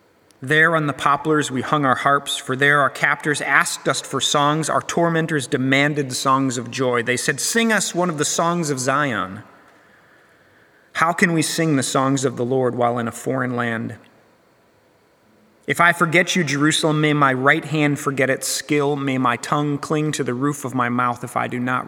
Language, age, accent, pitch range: English, 30-49, American, 130-160 Hz